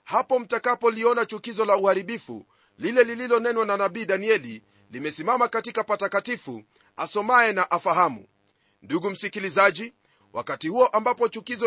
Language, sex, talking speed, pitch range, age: Swahili, male, 120 wpm, 195-240 Hz, 40-59